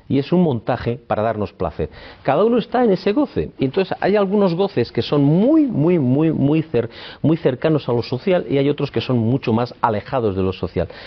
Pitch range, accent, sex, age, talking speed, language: 105-150 Hz, Spanish, male, 50-69, 215 wpm, Spanish